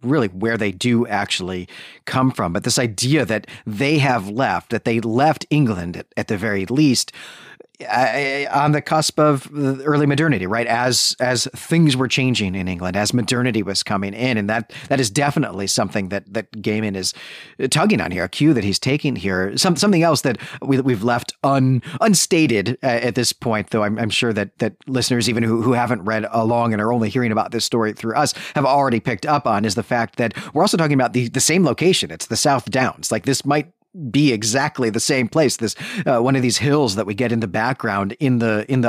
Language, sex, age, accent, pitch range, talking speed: English, male, 40-59, American, 110-140 Hz, 215 wpm